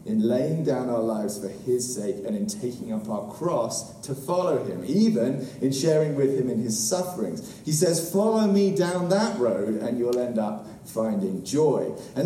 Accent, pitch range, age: British, 115-185 Hz, 30-49